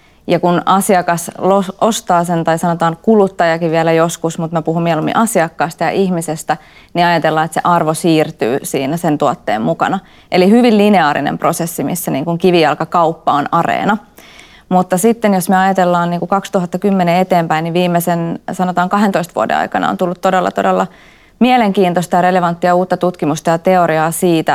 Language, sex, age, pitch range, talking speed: Finnish, female, 20-39, 165-185 Hz, 145 wpm